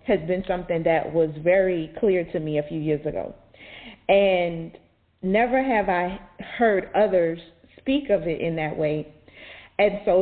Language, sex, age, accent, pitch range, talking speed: English, female, 30-49, American, 165-210 Hz, 160 wpm